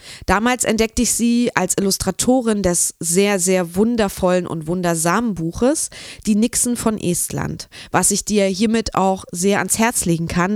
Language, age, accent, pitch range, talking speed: German, 20-39, German, 180-225 Hz, 155 wpm